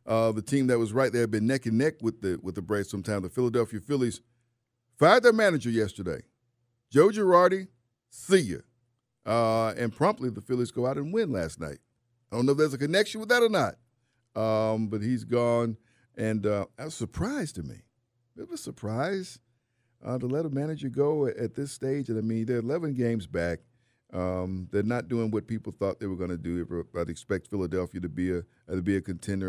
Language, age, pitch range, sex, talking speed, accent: English, 50-69, 100-125 Hz, male, 210 wpm, American